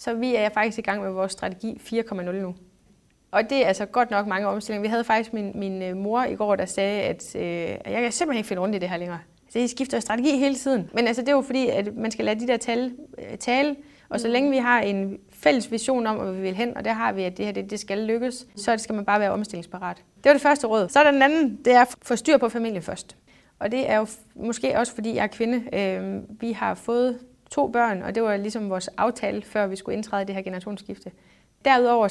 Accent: native